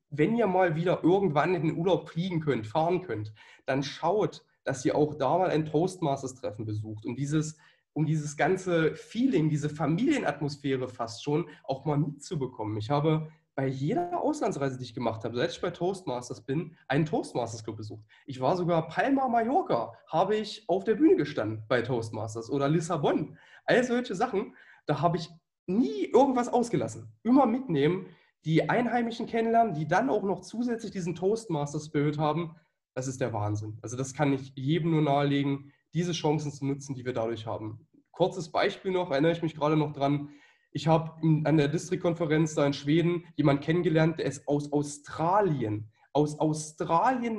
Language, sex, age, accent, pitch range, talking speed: German, male, 20-39, German, 140-180 Hz, 170 wpm